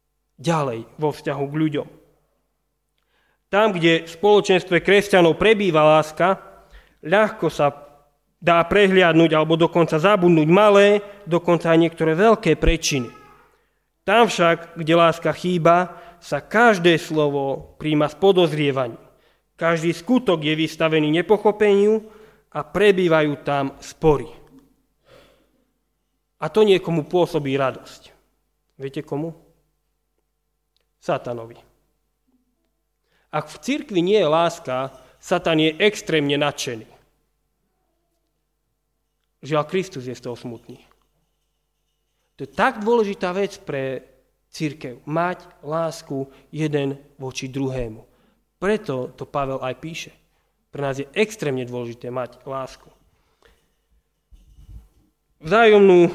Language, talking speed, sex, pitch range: Slovak, 100 wpm, male, 145-195 Hz